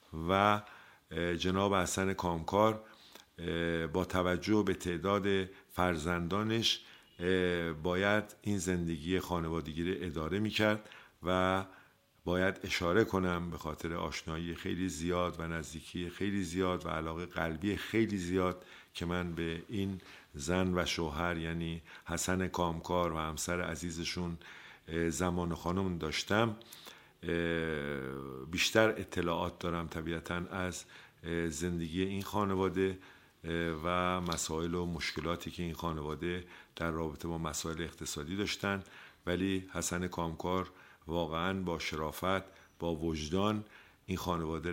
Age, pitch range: 50-69, 85-95 Hz